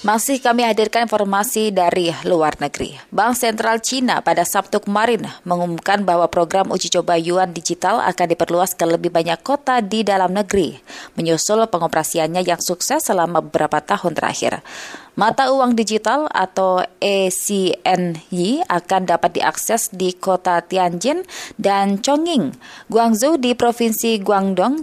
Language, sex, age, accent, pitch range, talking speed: Indonesian, female, 20-39, native, 175-230 Hz, 130 wpm